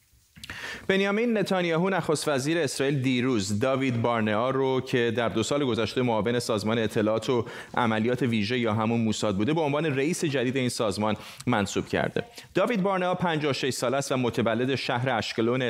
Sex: male